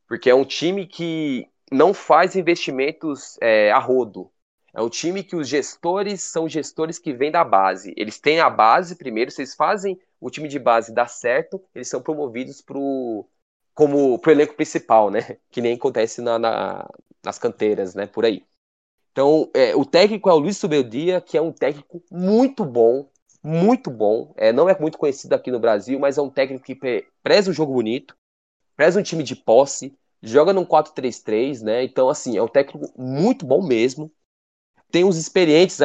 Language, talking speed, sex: Portuguese, 180 wpm, male